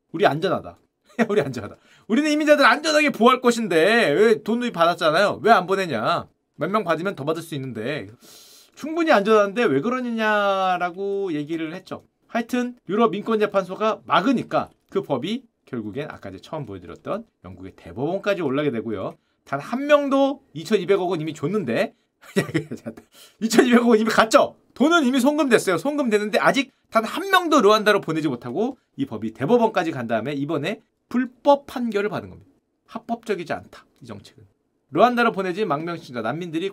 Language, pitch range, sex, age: Korean, 160-235 Hz, male, 30-49